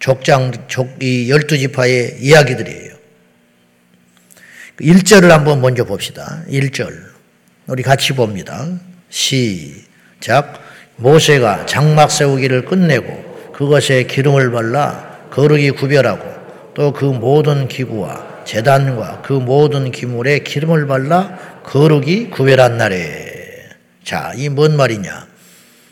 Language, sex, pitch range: Korean, male, 115-160 Hz